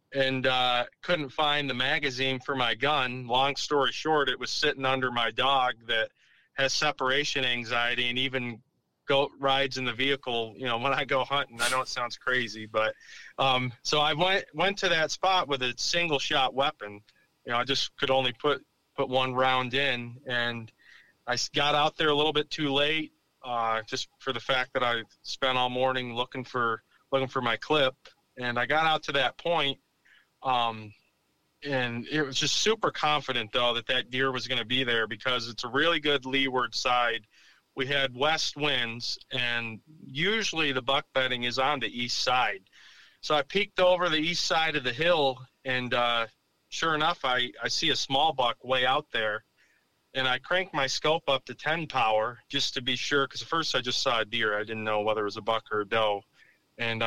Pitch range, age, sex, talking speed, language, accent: 120-145 Hz, 30-49, male, 200 wpm, English, American